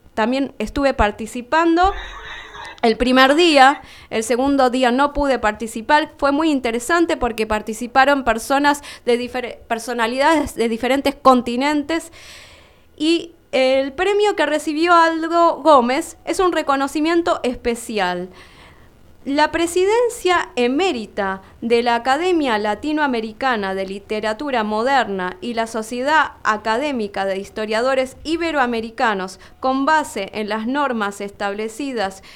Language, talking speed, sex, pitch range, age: Spanish, 110 wpm, female, 230-320 Hz, 20-39